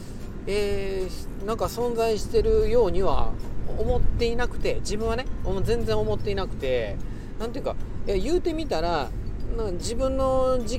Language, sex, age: Japanese, male, 40-59